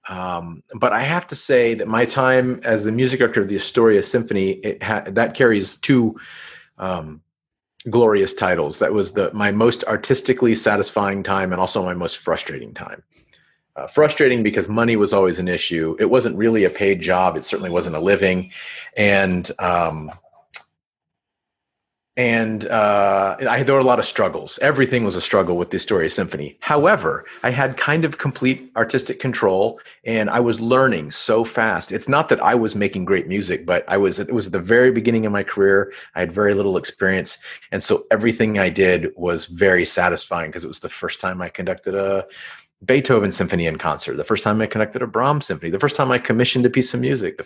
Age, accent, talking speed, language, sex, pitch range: 30-49, American, 190 wpm, English, male, 95-125 Hz